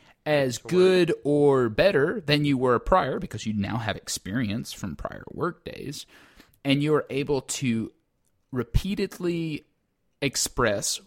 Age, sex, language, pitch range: 30-49, male, English, 115-150 Hz